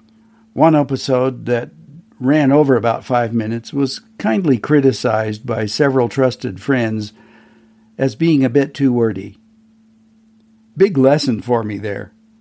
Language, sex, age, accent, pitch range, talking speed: English, male, 60-79, American, 115-170 Hz, 125 wpm